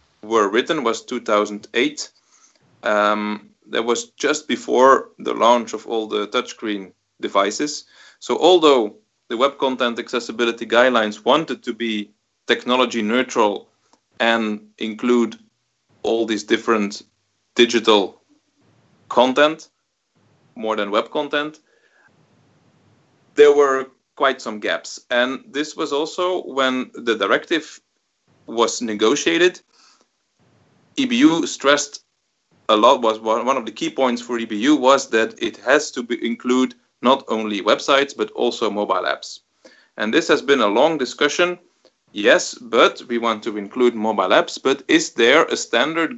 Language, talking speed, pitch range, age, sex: English, 125 wpm, 110-155 Hz, 30-49, male